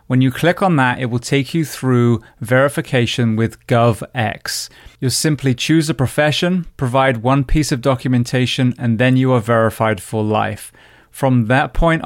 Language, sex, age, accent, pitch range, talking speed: English, male, 30-49, British, 115-140 Hz, 165 wpm